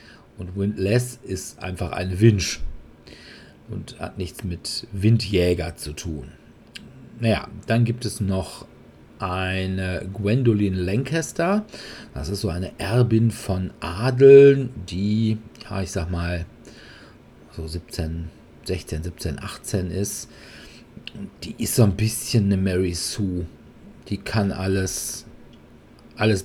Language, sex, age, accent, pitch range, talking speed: German, male, 40-59, German, 90-110 Hz, 115 wpm